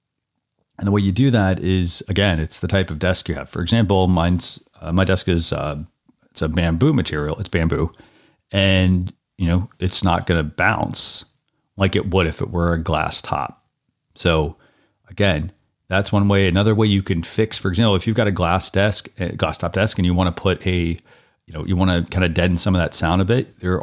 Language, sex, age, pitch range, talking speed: English, male, 30-49, 85-100 Hz, 225 wpm